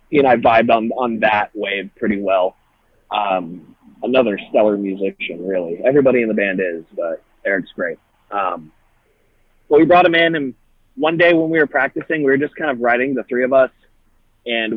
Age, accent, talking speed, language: 30-49, American, 190 wpm, English